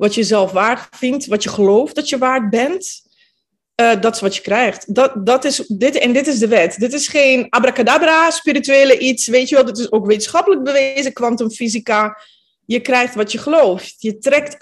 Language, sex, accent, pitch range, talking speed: Dutch, female, Dutch, 215-295 Hz, 205 wpm